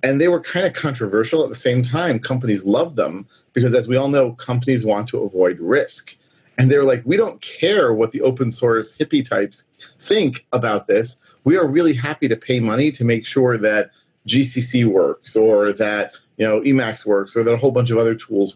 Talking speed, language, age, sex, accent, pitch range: 210 wpm, English, 30-49, male, American, 110-140 Hz